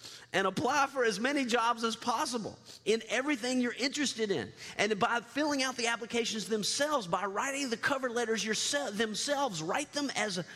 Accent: American